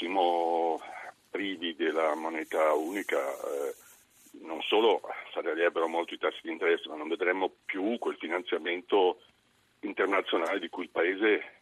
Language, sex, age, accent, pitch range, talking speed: Italian, male, 50-69, native, 365-455 Hz, 135 wpm